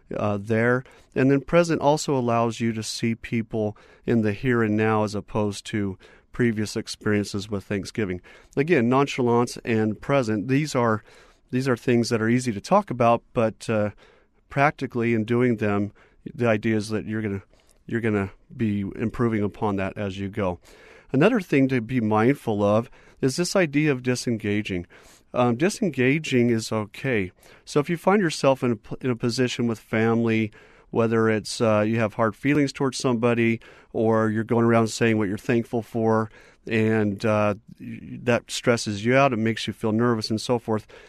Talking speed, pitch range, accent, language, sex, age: 170 wpm, 110-130 Hz, American, English, male, 40-59